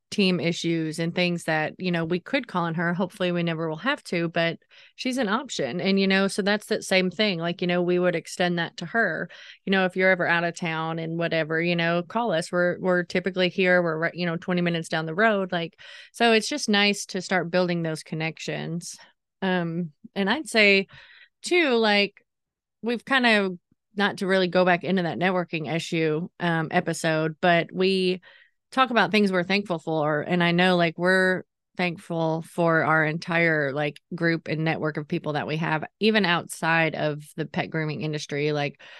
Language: English